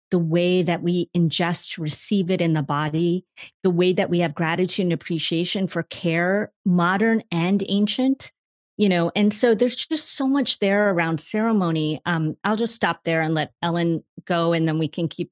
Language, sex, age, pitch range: English, female, 40-59, 170-225 Hz